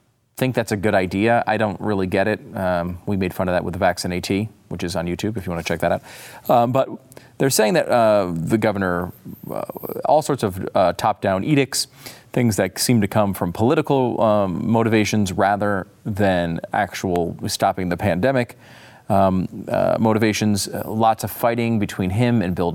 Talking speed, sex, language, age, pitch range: 190 wpm, male, English, 30-49, 95-115 Hz